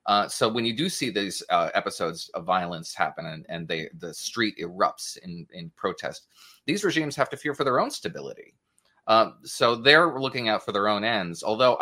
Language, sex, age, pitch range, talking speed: English, male, 30-49, 95-150 Hz, 205 wpm